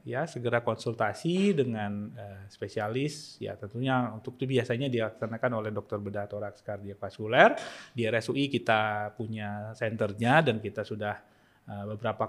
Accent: native